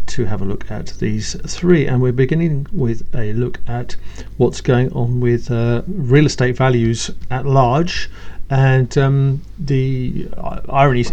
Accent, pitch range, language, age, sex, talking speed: British, 110-130 Hz, English, 50-69, male, 150 wpm